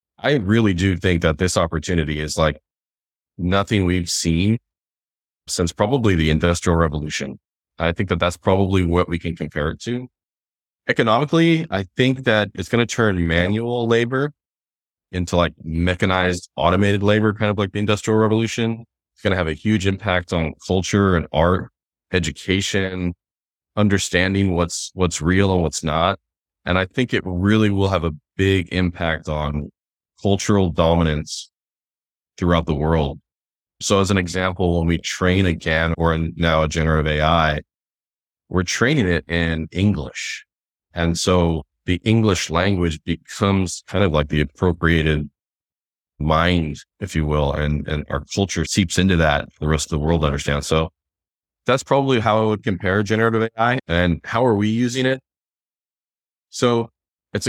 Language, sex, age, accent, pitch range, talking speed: English, male, 20-39, American, 80-105 Hz, 155 wpm